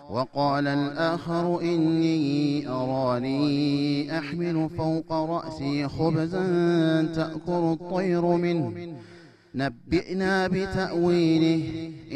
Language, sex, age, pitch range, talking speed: Amharic, male, 30-49, 145-175 Hz, 65 wpm